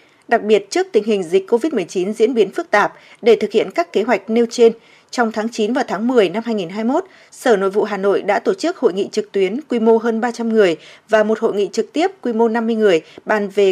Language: Vietnamese